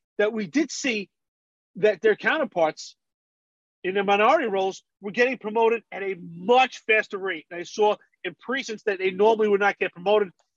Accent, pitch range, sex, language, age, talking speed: American, 190-240 Hz, male, English, 40-59, 175 wpm